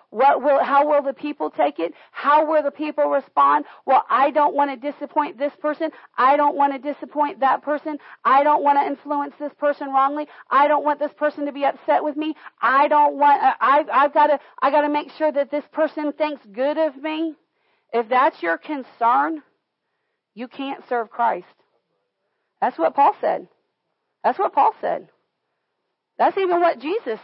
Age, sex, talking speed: 40-59, female, 185 wpm